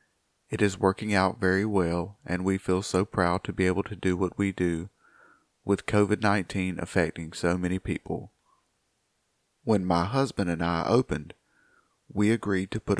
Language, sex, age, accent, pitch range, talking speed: English, male, 40-59, American, 90-100 Hz, 160 wpm